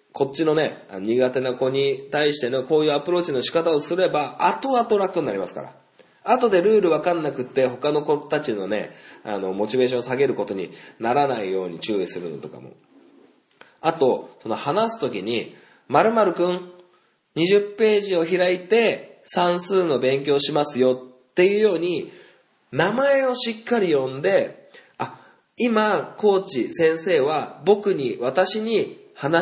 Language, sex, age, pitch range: Japanese, male, 20-39, 150-230 Hz